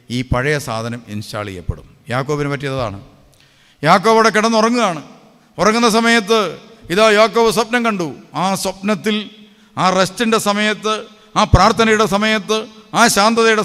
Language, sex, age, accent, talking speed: English, male, 50-69, Indian, 75 wpm